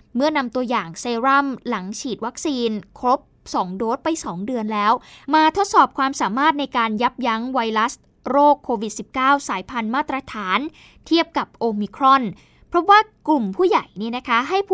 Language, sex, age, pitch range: Thai, female, 20-39, 230-290 Hz